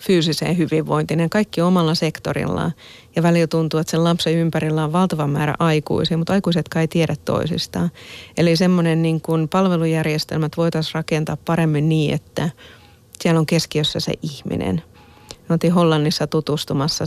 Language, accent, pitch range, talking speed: Finnish, native, 150-165 Hz, 145 wpm